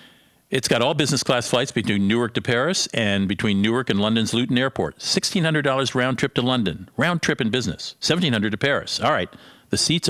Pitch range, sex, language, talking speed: 105-160 Hz, male, English, 195 wpm